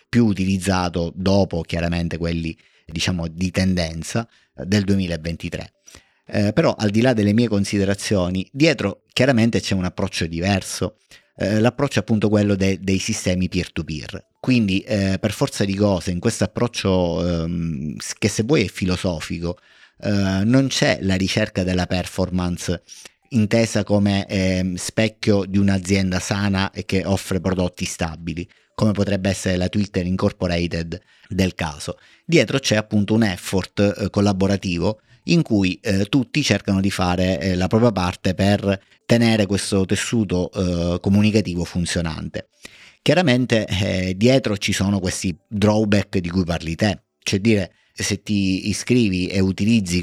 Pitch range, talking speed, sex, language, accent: 90-105 Hz, 135 wpm, male, Italian, native